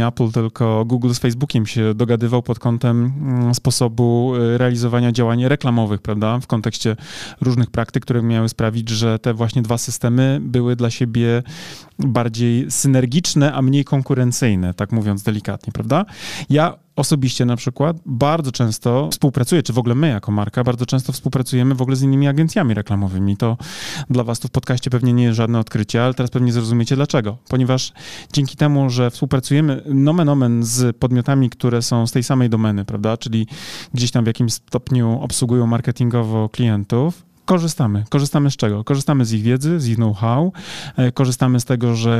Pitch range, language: 115-140 Hz, Polish